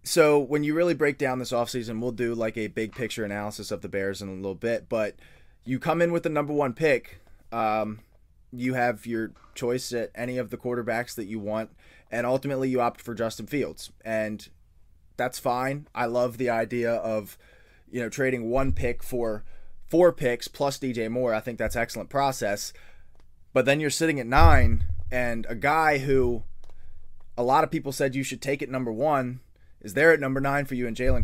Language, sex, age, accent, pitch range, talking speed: English, male, 20-39, American, 105-135 Hz, 200 wpm